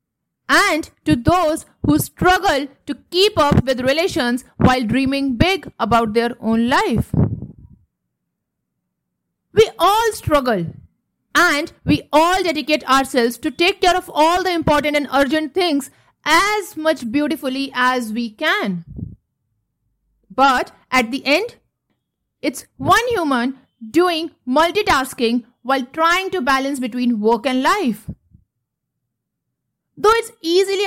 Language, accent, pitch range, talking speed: English, Indian, 235-320 Hz, 120 wpm